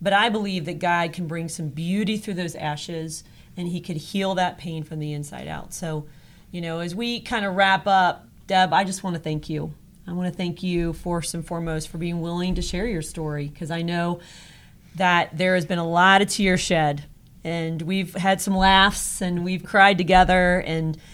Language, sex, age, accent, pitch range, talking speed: English, female, 40-59, American, 160-185 Hz, 205 wpm